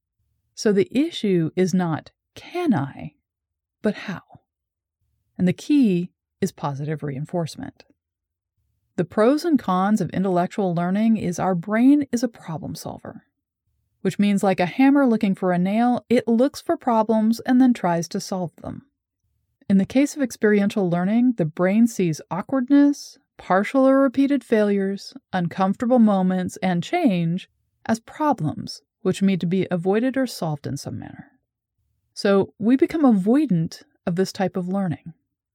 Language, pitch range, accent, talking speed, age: English, 165-240 Hz, American, 145 wpm, 30-49